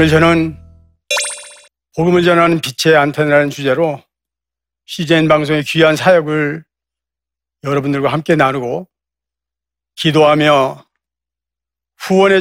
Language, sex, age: Korean, male, 40-59